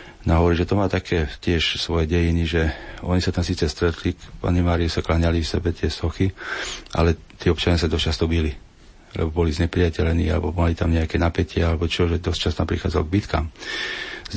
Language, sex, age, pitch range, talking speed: Slovak, male, 40-59, 80-90 Hz, 200 wpm